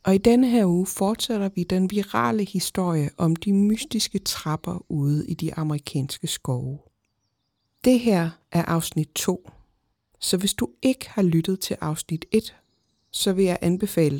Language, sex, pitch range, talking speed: Danish, female, 160-205 Hz, 155 wpm